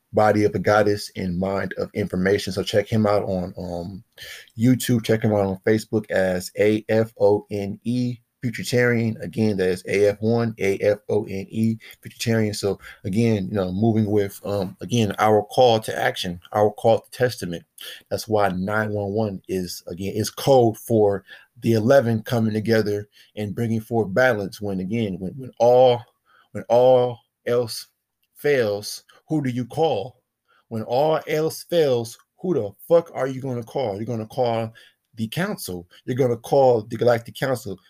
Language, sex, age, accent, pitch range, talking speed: English, male, 30-49, American, 105-120 Hz, 175 wpm